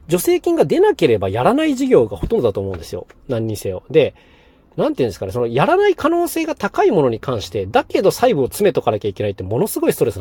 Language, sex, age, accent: Japanese, male, 40-59, native